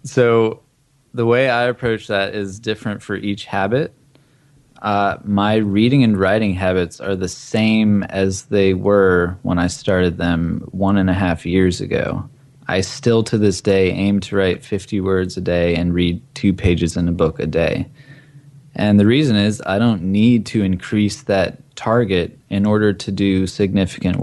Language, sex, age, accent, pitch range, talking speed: English, male, 20-39, American, 95-130 Hz, 175 wpm